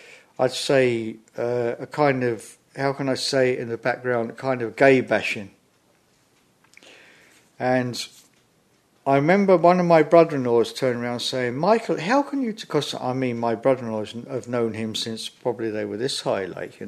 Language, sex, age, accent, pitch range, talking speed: English, male, 50-69, British, 125-195 Hz, 170 wpm